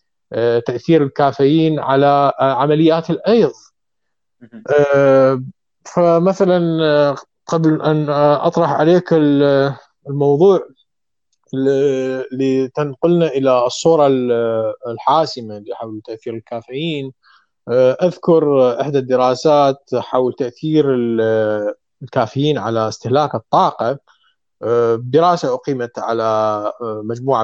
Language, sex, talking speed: Arabic, male, 70 wpm